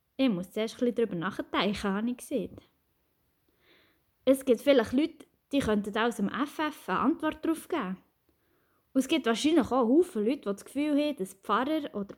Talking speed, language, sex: 165 wpm, German, female